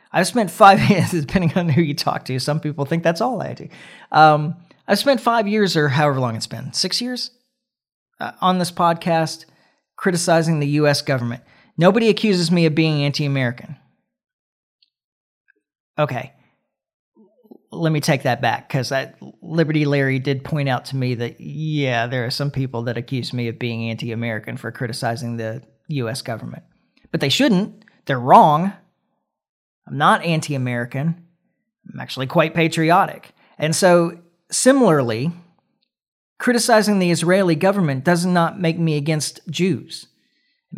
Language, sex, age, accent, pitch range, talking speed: English, male, 40-59, American, 140-200 Hz, 145 wpm